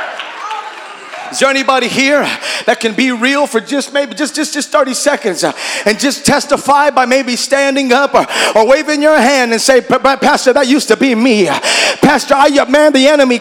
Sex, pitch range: male, 265-315 Hz